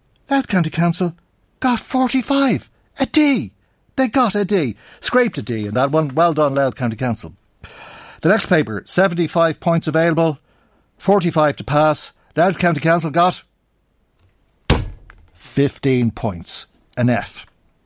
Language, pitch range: English, 120-185 Hz